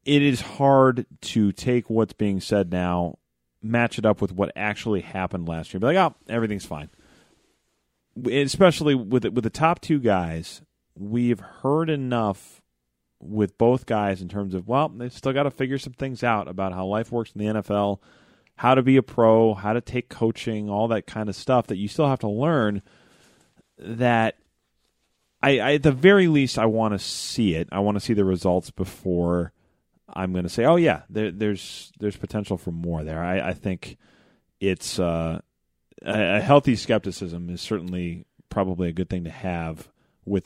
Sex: male